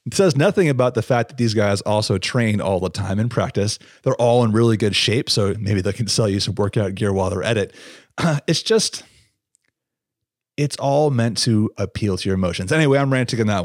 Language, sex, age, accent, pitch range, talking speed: English, male, 30-49, American, 105-135 Hz, 225 wpm